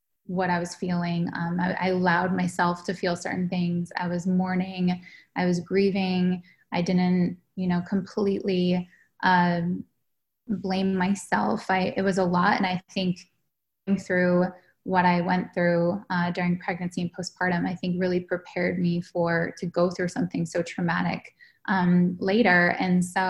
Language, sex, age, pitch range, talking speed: English, female, 10-29, 180-200 Hz, 160 wpm